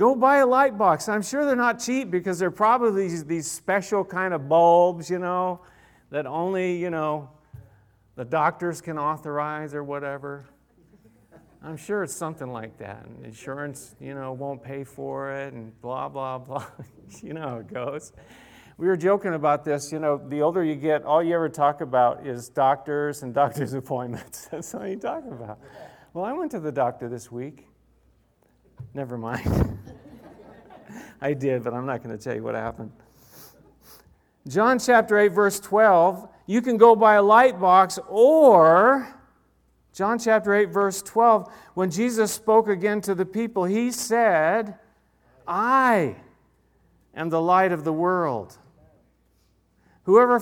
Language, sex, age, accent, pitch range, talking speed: English, male, 50-69, American, 140-210 Hz, 160 wpm